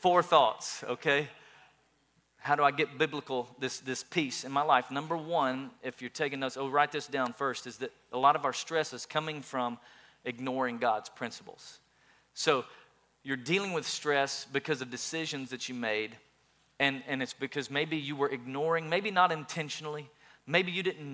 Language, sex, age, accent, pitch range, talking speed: English, male, 40-59, American, 135-170 Hz, 180 wpm